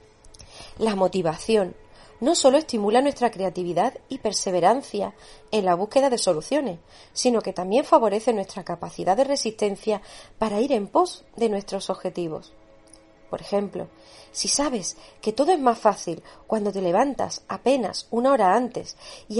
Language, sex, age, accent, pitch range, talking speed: Spanish, female, 40-59, Spanish, 180-250 Hz, 140 wpm